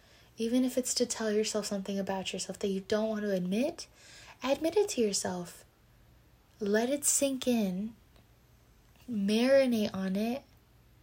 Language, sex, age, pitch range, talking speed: English, female, 20-39, 200-250 Hz, 140 wpm